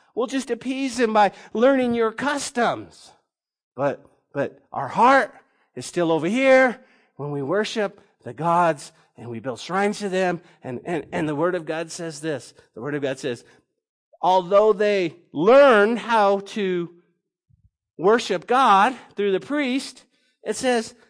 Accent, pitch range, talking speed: American, 170-245 Hz, 150 wpm